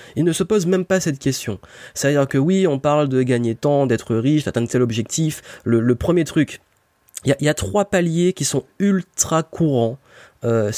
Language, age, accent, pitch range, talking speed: French, 30-49, French, 110-150 Hz, 200 wpm